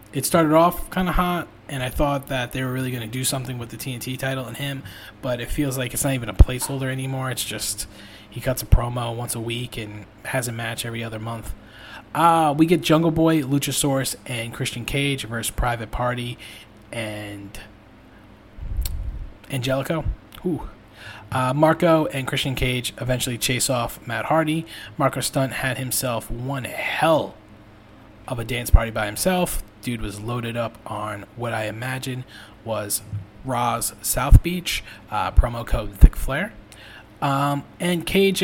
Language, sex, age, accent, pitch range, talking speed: English, male, 20-39, American, 110-135 Hz, 165 wpm